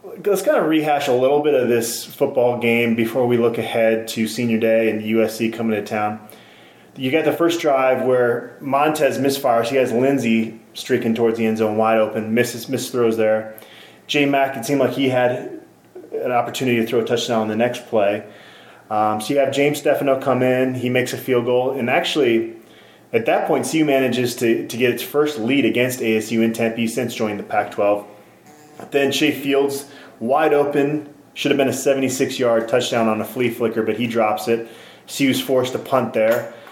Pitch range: 110-130 Hz